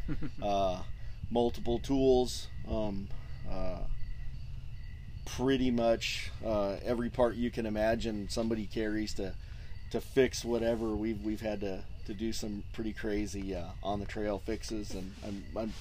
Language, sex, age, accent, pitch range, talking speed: English, male, 30-49, American, 100-120 Hz, 135 wpm